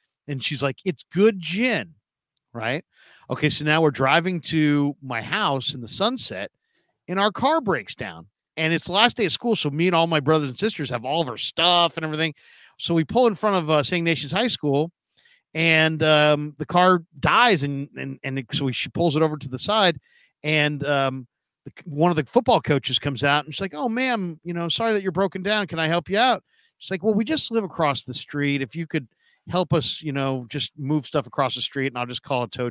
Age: 50-69